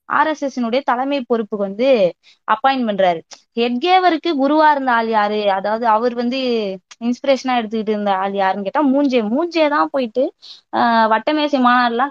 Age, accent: 20-39, native